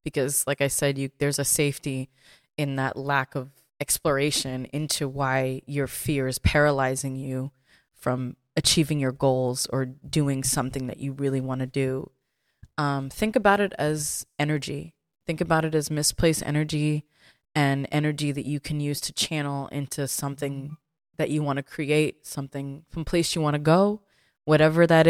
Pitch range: 135-155 Hz